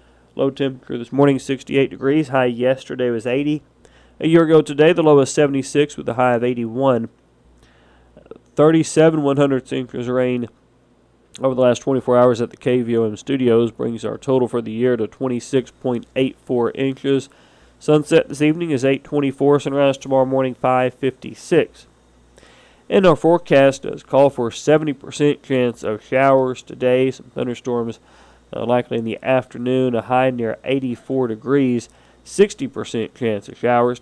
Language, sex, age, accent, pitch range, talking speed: English, male, 40-59, American, 115-135 Hz, 145 wpm